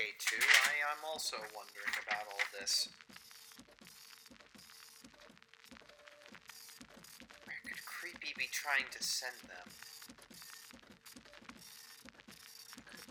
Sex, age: male, 40-59